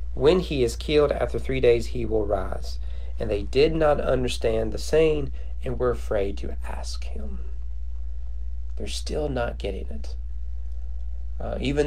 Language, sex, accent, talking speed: English, male, American, 150 wpm